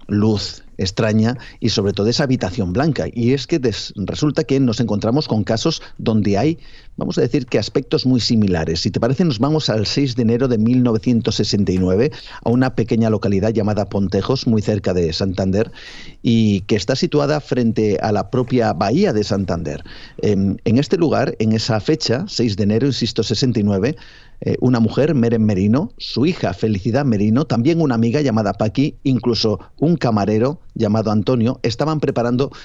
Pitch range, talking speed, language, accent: 105-130 Hz, 165 wpm, Spanish, Spanish